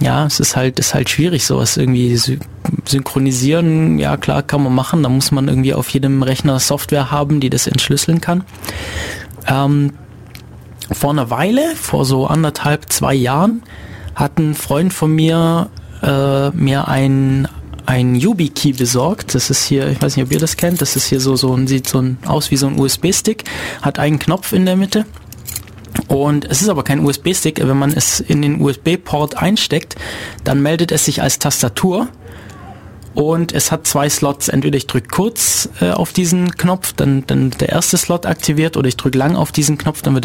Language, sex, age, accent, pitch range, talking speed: German, male, 20-39, German, 125-160 Hz, 185 wpm